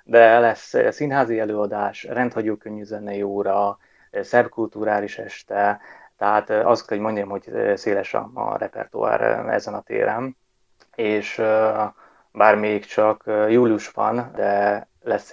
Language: Hungarian